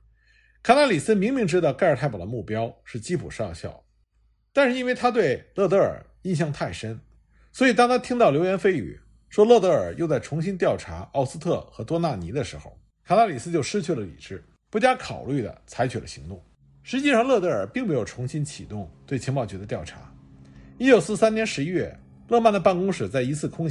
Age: 50-69